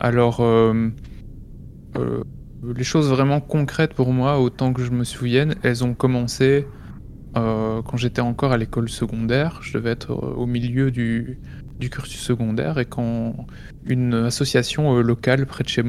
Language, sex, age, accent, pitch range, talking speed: French, male, 20-39, French, 115-130 Hz, 155 wpm